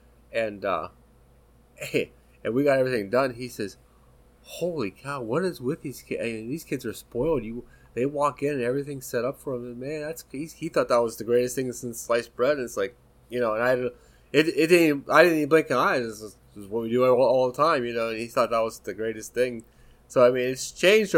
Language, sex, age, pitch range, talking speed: English, male, 20-39, 115-135 Hz, 250 wpm